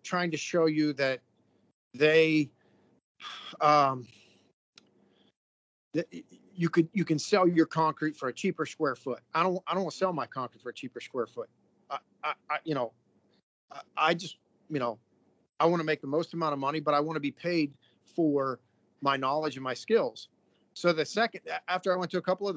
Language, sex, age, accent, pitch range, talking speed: English, male, 40-59, American, 140-175 Hz, 200 wpm